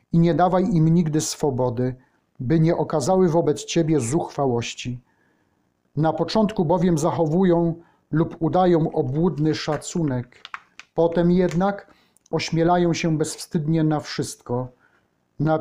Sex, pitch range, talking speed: male, 145-170 Hz, 110 wpm